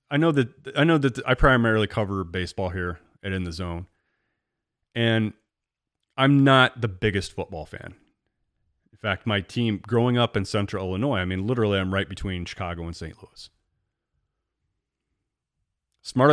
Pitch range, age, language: 90-115 Hz, 30-49, English